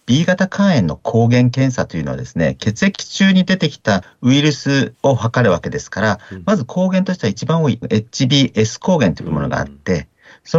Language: Japanese